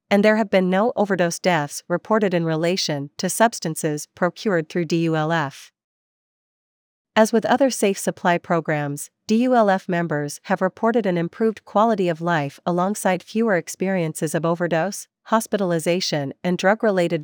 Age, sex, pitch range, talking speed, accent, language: 40-59, female, 160-200 Hz, 130 wpm, American, English